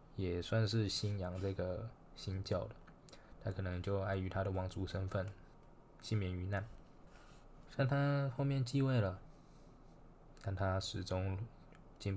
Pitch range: 95-115 Hz